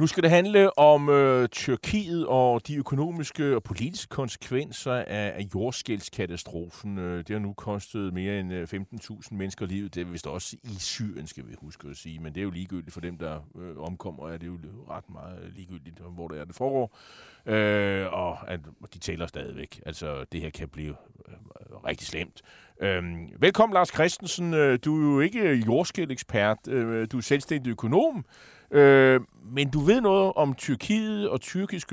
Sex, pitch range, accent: male, 100-140 Hz, native